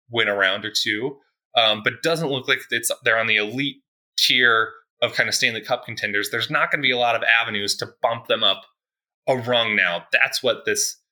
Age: 20-39